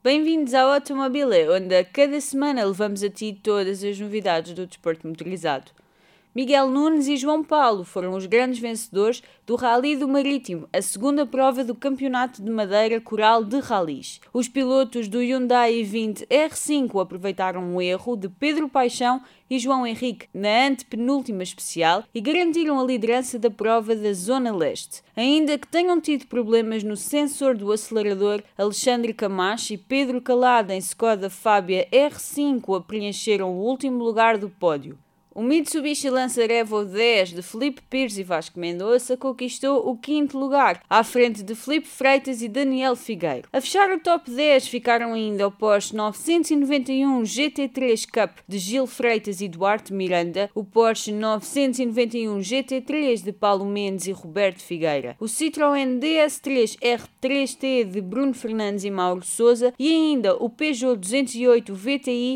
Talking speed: 150 wpm